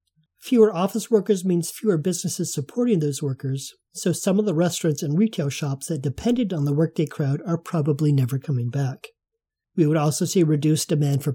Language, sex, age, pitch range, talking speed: English, male, 40-59, 150-185 Hz, 185 wpm